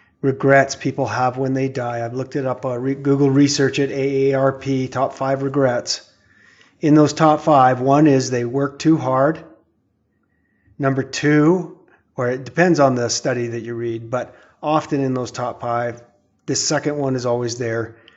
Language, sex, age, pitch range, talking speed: English, male, 30-49, 120-140 Hz, 175 wpm